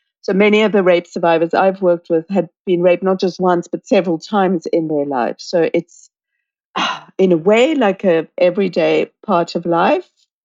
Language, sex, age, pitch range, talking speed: English, female, 50-69, 165-200 Hz, 185 wpm